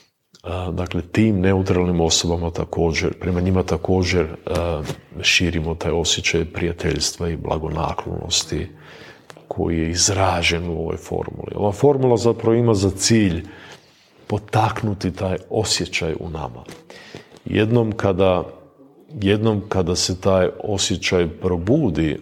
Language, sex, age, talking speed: Croatian, male, 40-59, 105 wpm